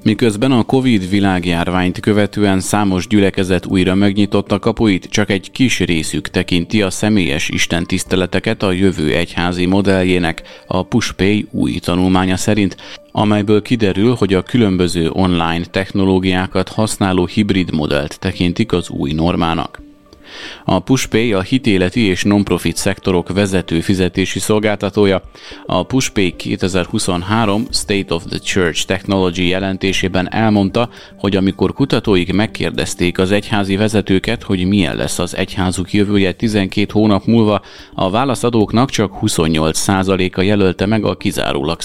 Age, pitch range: 30-49, 90-105 Hz